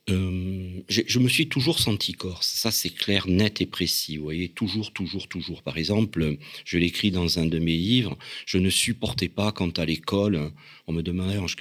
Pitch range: 85-105 Hz